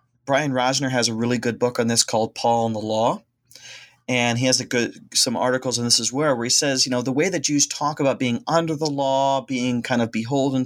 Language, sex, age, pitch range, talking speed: English, male, 30-49, 115-135 Hz, 250 wpm